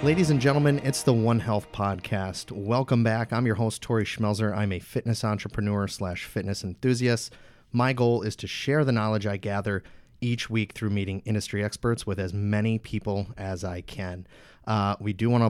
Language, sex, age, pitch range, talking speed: English, male, 30-49, 100-115 Hz, 190 wpm